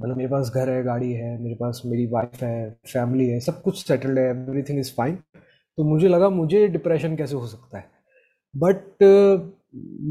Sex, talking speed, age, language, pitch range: male, 190 wpm, 20-39, Urdu, 125-165 Hz